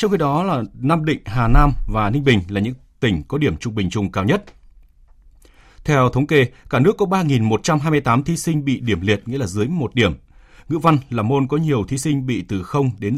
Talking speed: 230 wpm